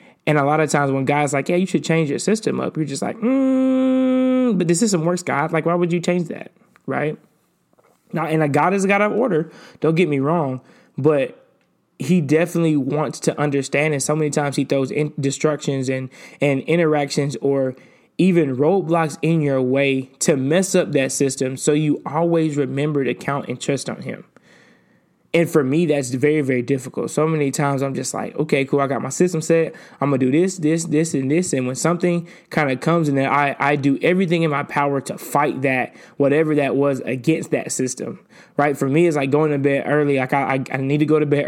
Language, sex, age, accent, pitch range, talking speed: English, male, 20-39, American, 140-170 Hz, 220 wpm